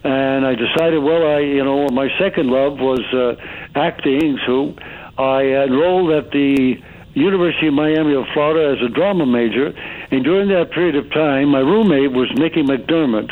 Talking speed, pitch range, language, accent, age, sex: 170 wpm, 130-150 Hz, English, American, 60-79, male